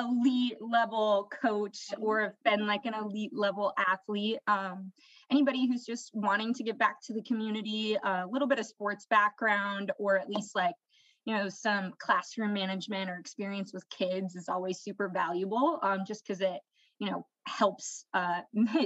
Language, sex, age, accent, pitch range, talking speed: English, female, 20-39, American, 195-230 Hz, 170 wpm